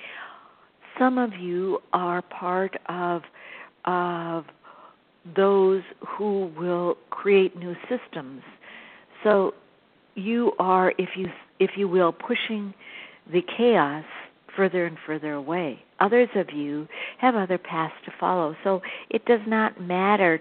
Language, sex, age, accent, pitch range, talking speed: English, female, 60-79, American, 165-210 Hz, 120 wpm